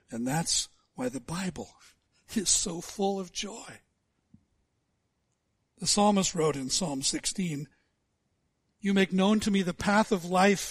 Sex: male